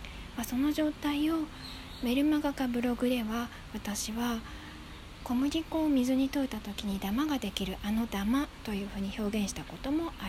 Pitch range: 205-275 Hz